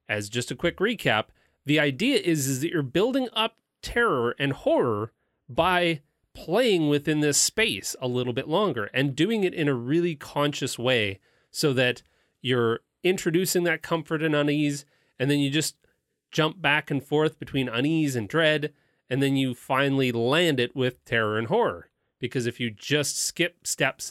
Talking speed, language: 170 wpm, English